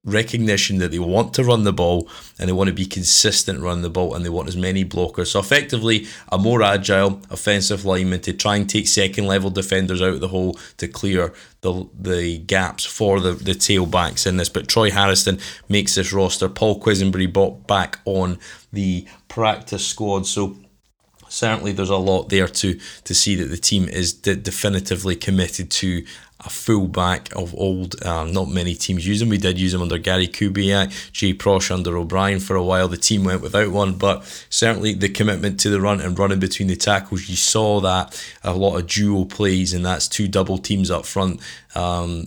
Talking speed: 200 wpm